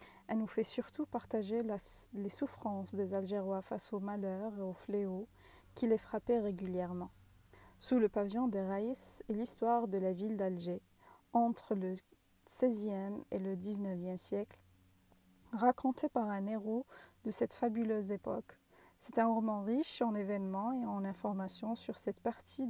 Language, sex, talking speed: Arabic, female, 155 wpm